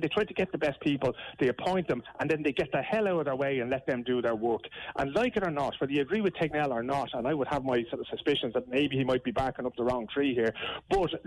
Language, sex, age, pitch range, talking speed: English, male, 30-49, 135-185 Hz, 310 wpm